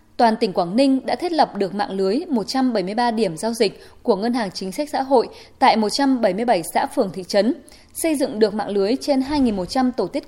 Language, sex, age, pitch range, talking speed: Vietnamese, female, 20-39, 205-265 Hz, 210 wpm